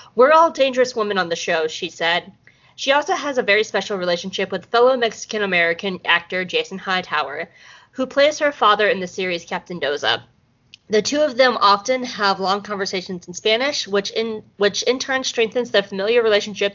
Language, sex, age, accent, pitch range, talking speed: English, female, 20-39, American, 185-245 Hz, 175 wpm